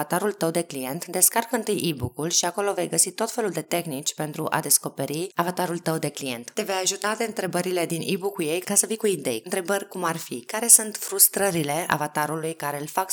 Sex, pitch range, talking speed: female, 150-195 Hz, 210 wpm